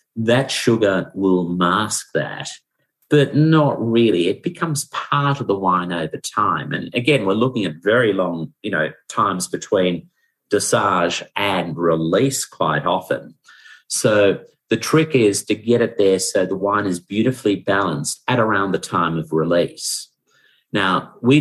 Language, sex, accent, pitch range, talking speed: English, male, Australian, 90-115 Hz, 150 wpm